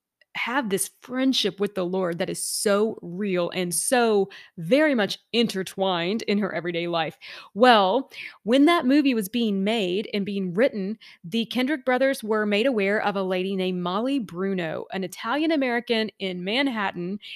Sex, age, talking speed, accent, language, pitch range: female, 30-49, 160 wpm, American, English, 185-225 Hz